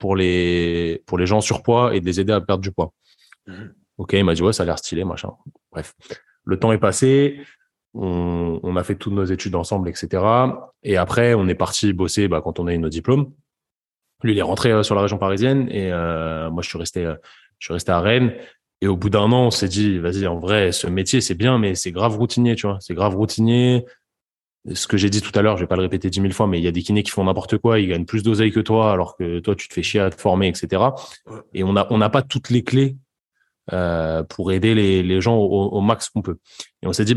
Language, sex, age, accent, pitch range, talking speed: French, male, 20-39, French, 90-110 Hz, 265 wpm